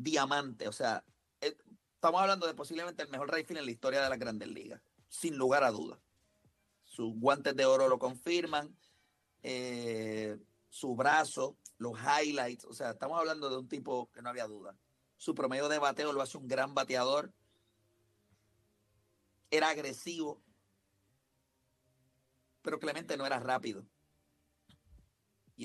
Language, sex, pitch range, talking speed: Spanish, male, 115-155 Hz, 140 wpm